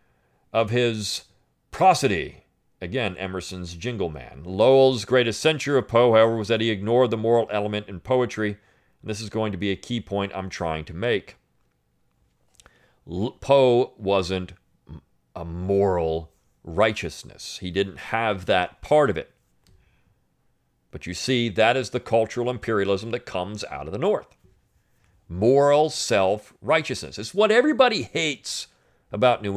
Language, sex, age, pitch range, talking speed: English, male, 40-59, 90-125 Hz, 140 wpm